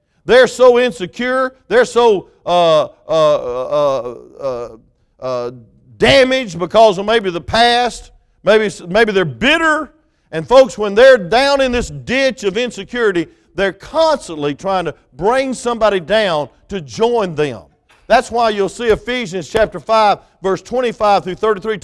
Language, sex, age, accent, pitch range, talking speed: English, male, 50-69, American, 190-260 Hz, 140 wpm